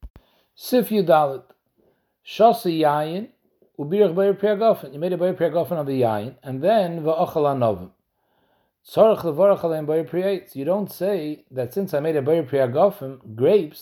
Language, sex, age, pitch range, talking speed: English, male, 60-79, 135-185 Hz, 135 wpm